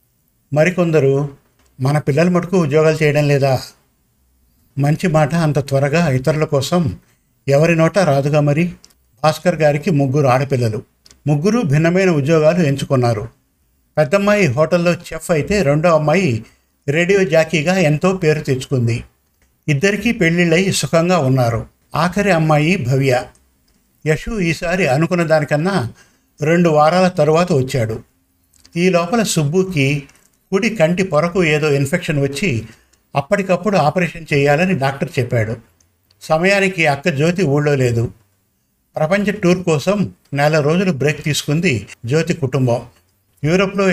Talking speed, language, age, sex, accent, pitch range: 110 wpm, Telugu, 50-69, male, native, 135-175 Hz